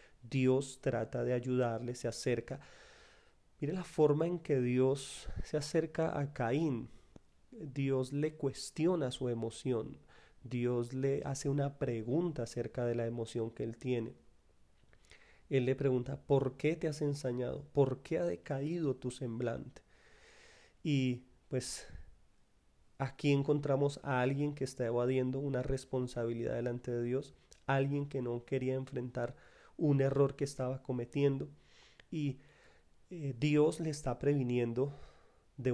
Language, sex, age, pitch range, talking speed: Spanish, male, 30-49, 120-145 Hz, 130 wpm